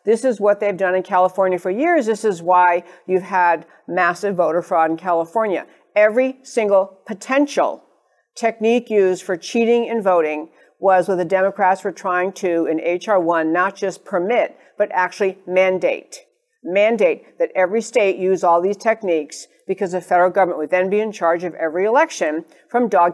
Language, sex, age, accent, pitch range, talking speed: English, female, 50-69, American, 180-235 Hz, 170 wpm